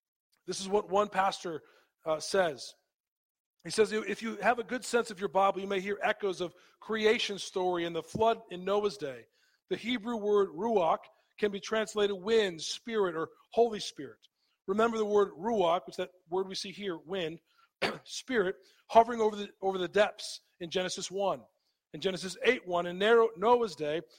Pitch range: 185-220 Hz